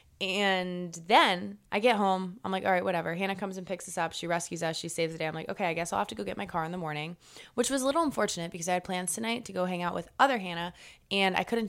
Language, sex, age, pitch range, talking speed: English, female, 20-39, 175-220 Hz, 300 wpm